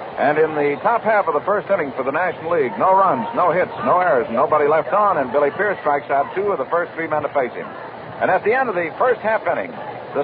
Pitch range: 145-210 Hz